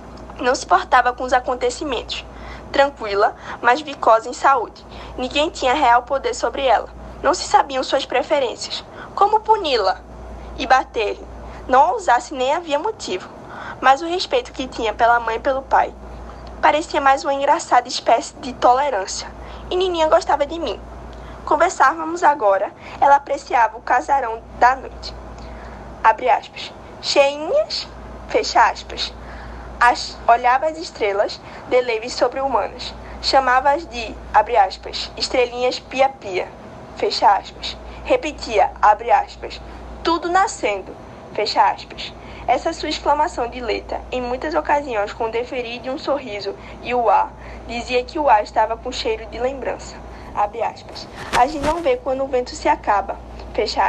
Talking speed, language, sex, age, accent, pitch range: 140 wpm, Portuguese, female, 10-29, Brazilian, 245-310 Hz